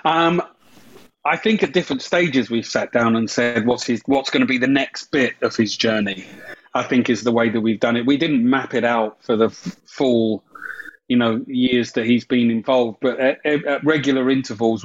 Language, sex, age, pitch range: English, male, 30-49, 115-130 Hz